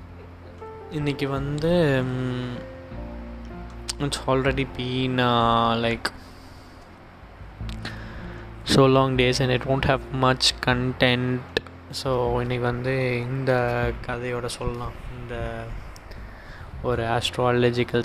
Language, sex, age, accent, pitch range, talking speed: Tamil, male, 20-39, native, 115-130 Hz, 80 wpm